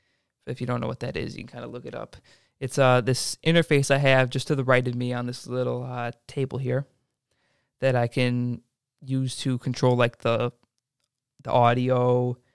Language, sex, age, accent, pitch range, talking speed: English, male, 20-39, American, 120-135 Hz, 200 wpm